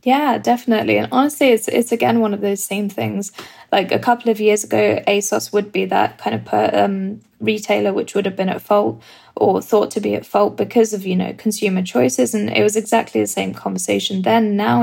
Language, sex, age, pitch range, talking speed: English, female, 10-29, 190-215 Hz, 220 wpm